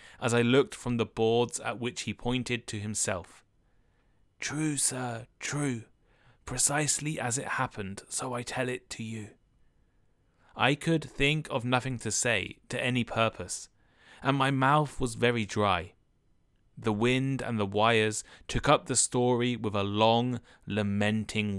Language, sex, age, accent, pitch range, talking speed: English, male, 20-39, British, 110-130 Hz, 150 wpm